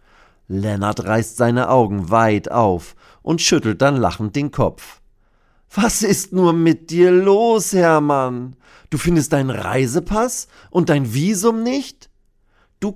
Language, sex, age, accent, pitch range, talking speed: German, male, 40-59, German, 100-155 Hz, 130 wpm